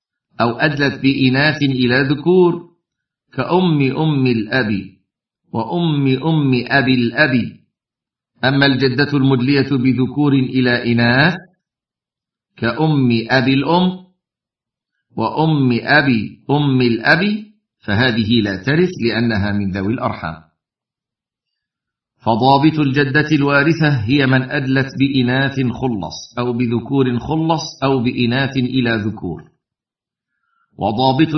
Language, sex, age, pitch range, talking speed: Arabic, male, 50-69, 120-145 Hz, 90 wpm